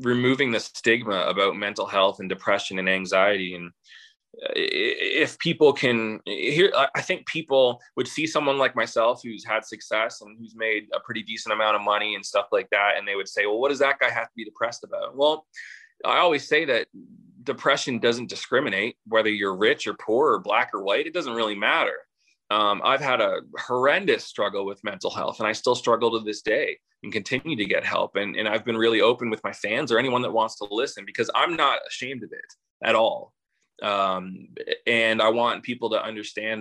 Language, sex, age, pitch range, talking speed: English, male, 20-39, 105-140 Hz, 205 wpm